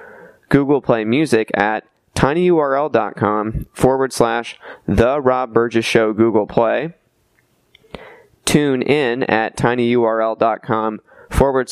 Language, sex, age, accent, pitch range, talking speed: English, male, 20-39, American, 110-140 Hz, 85 wpm